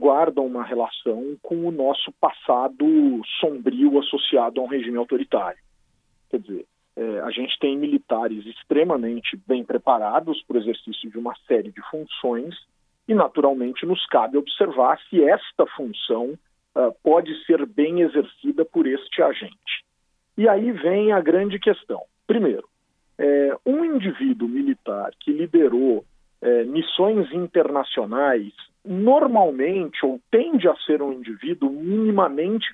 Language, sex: Portuguese, male